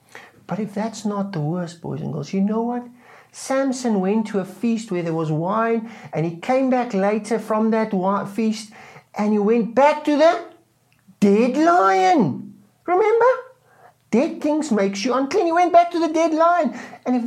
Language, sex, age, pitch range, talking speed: English, male, 50-69, 170-285 Hz, 185 wpm